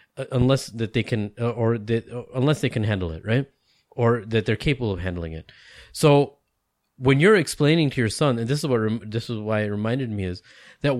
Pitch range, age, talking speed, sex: 105-140 Hz, 30-49, 205 wpm, male